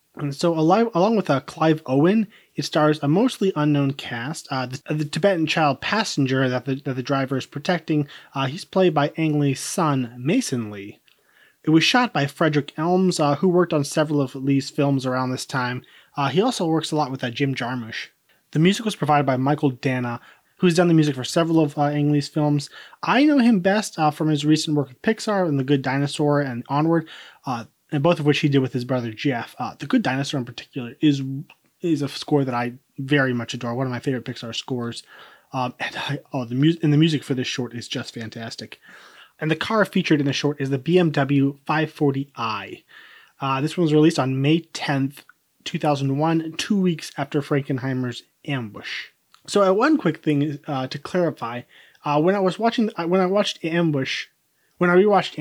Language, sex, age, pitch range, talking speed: English, male, 20-39, 135-165 Hz, 205 wpm